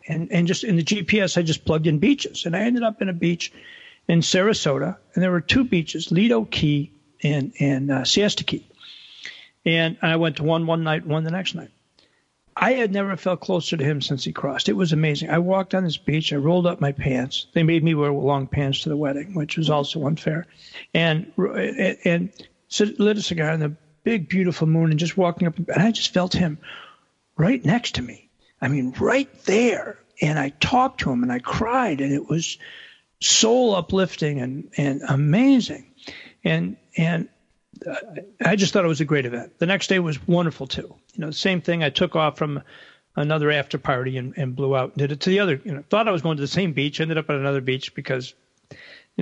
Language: English